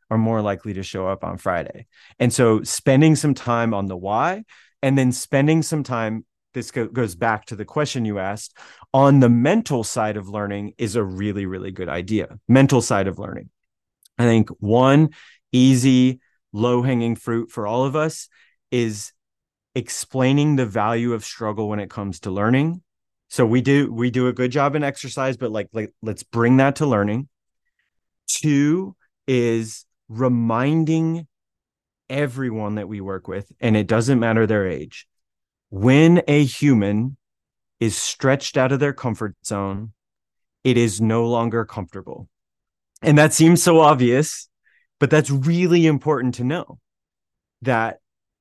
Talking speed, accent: 155 wpm, American